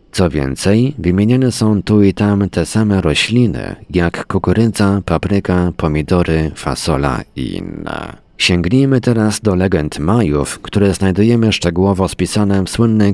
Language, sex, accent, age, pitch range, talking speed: Polish, male, native, 40-59, 80-105 Hz, 130 wpm